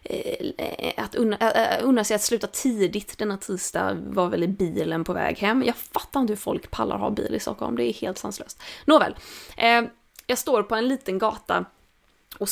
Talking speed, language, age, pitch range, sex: 180 wpm, Swedish, 20-39, 200-255 Hz, female